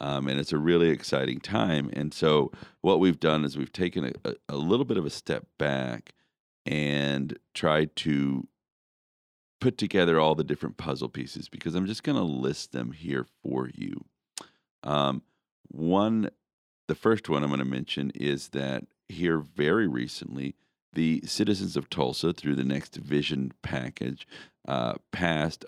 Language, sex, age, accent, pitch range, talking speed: English, male, 40-59, American, 70-85 Hz, 160 wpm